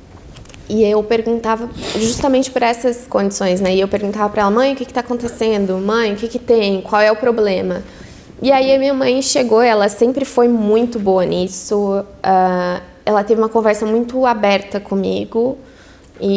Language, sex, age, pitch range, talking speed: Portuguese, female, 20-39, 200-250 Hz, 180 wpm